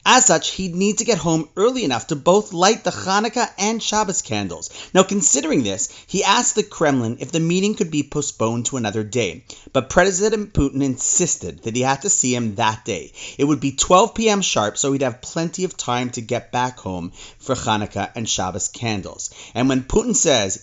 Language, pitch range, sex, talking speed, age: English, 125-190 Hz, male, 205 wpm, 30-49